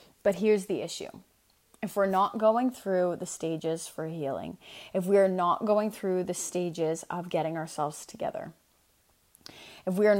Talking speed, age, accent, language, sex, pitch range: 165 wpm, 20-39, American, English, female, 175-200 Hz